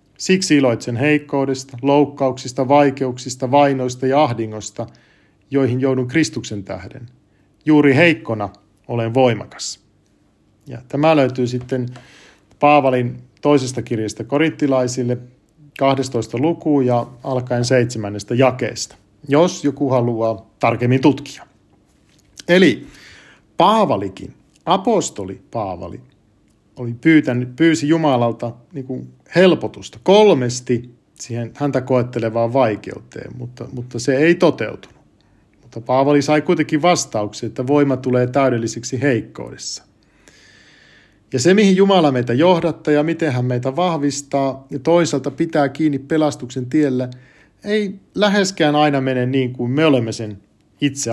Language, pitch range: Finnish, 120-150 Hz